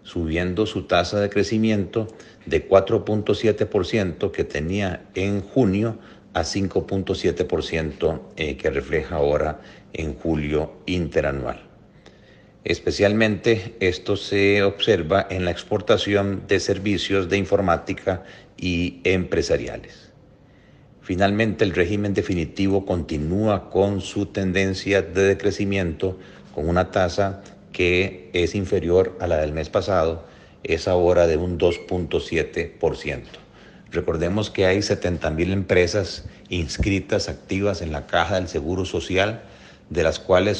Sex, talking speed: male, 110 wpm